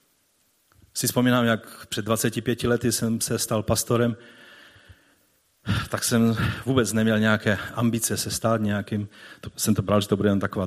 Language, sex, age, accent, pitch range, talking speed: Czech, male, 40-59, native, 105-140 Hz, 150 wpm